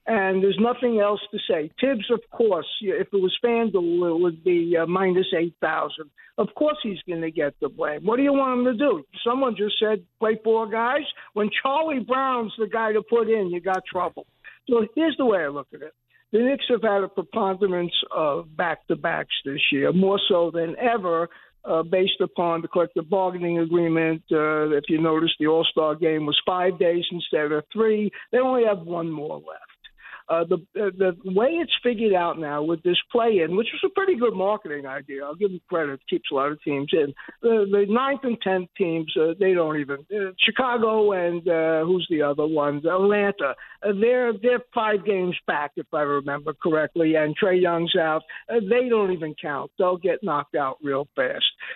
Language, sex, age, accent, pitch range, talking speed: English, male, 60-79, American, 165-225 Hz, 200 wpm